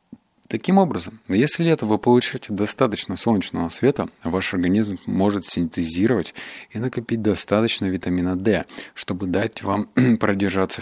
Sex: male